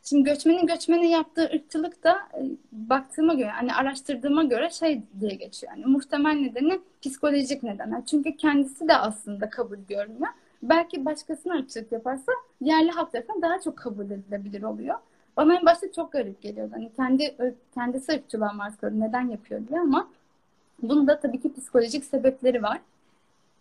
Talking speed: 150 wpm